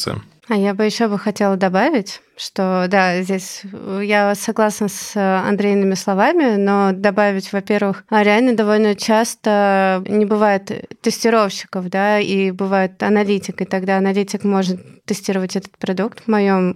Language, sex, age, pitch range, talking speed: Russian, female, 20-39, 195-220 Hz, 135 wpm